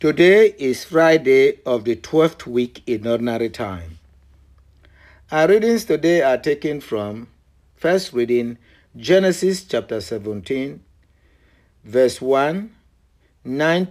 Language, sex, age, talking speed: English, male, 60-79, 105 wpm